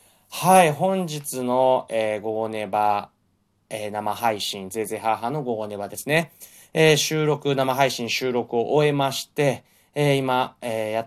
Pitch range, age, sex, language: 105-140 Hz, 20-39, male, Japanese